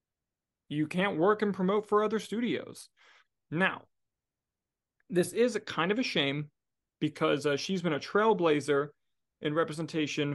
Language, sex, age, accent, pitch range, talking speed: English, male, 20-39, American, 140-175 Hz, 140 wpm